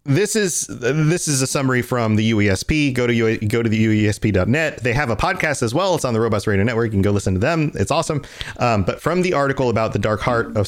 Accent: American